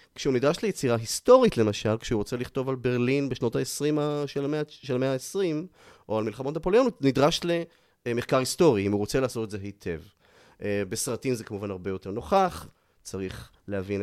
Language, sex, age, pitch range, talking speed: Hebrew, male, 30-49, 105-150 Hz, 165 wpm